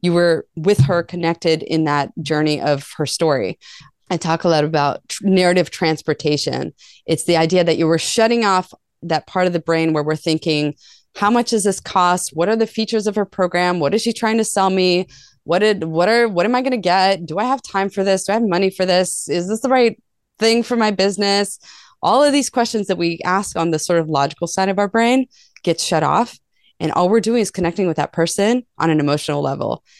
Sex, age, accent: female, 20-39, American